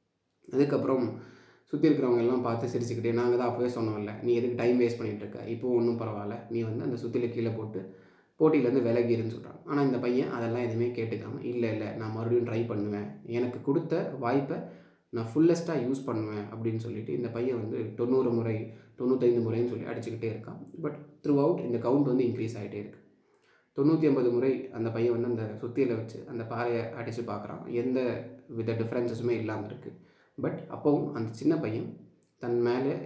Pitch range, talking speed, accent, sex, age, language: 115-125 Hz, 165 wpm, native, male, 20-39, Tamil